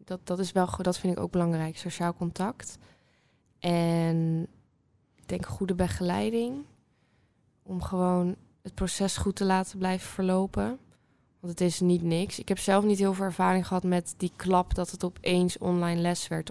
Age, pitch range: 20-39, 165-185 Hz